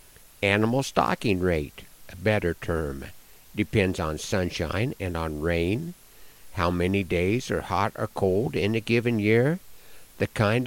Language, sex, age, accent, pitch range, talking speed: English, male, 60-79, American, 90-130 Hz, 140 wpm